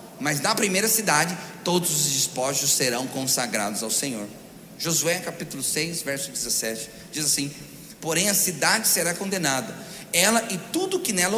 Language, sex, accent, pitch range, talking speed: Portuguese, male, Brazilian, 160-210 Hz, 150 wpm